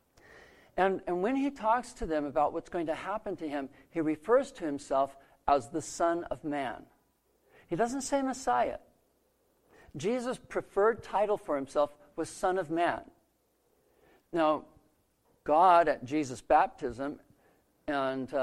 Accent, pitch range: American, 140-180 Hz